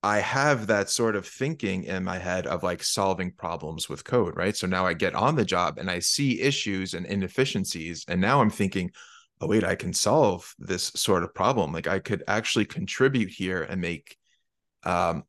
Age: 30-49